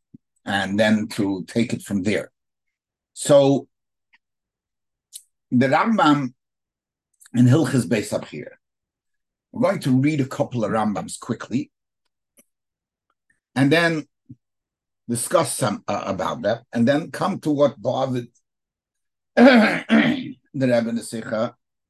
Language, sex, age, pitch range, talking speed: English, male, 60-79, 115-150 Hz, 105 wpm